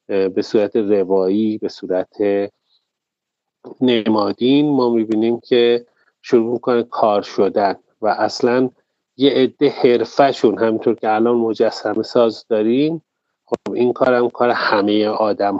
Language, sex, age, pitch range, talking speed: English, male, 30-49, 105-130 Hz, 120 wpm